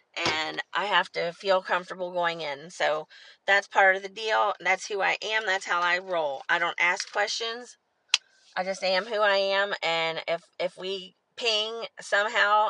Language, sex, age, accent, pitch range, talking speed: English, female, 30-49, American, 175-210 Hz, 180 wpm